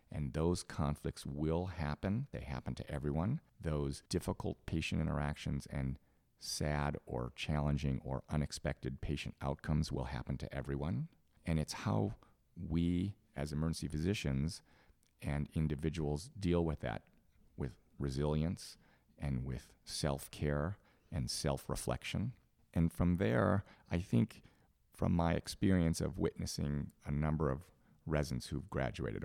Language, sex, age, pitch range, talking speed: English, male, 40-59, 70-85 Hz, 125 wpm